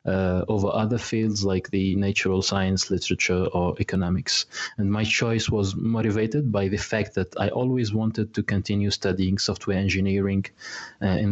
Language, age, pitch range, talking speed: English, 20-39, 100-120 Hz, 160 wpm